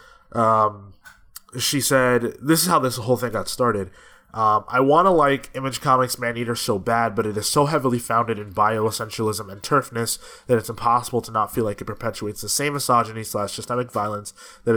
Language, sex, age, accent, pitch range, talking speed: English, male, 20-39, American, 110-130 Hz, 200 wpm